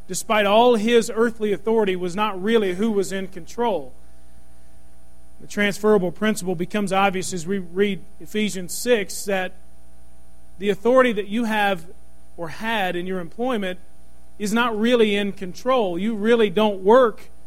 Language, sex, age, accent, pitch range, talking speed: English, male, 40-59, American, 180-225 Hz, 145 wpm